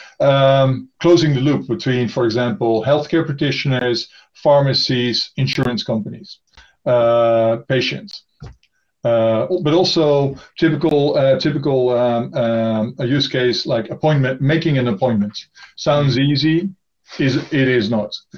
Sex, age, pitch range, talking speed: male, 50-69, 120-150 Hz, 120 wpm